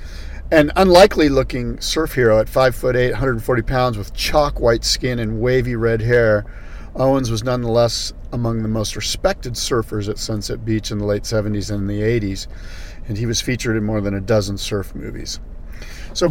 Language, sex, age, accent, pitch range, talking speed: English, male, 40-59, American, 105-130 Hz, 185 wpm